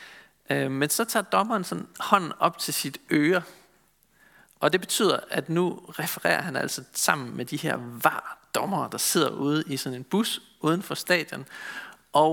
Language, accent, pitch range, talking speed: Danish, native, 145-195 Hz, 165 wpm